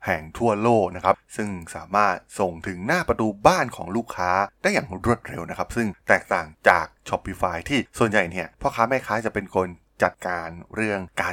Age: 20-39